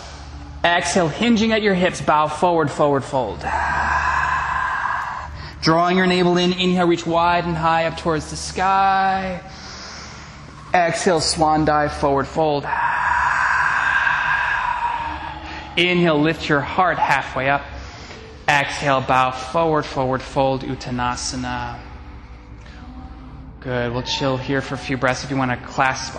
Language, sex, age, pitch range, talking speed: English, male, 20-39, 120-165 Hz, 120 wpm